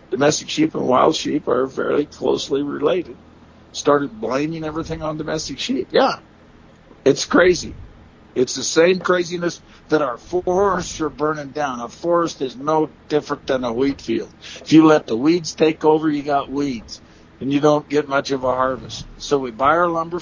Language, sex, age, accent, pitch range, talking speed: English, male, 60-79, American, 140-170 Hz, 180 wpm